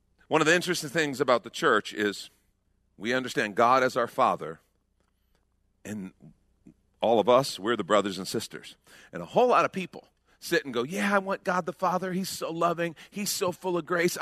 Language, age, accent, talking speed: English, 40-59, American, 200 wpm